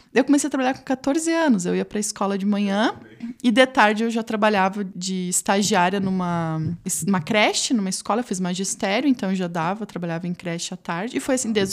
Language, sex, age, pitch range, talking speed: Portuguese, female, 20-39, 190-245 Hz, 225 wpm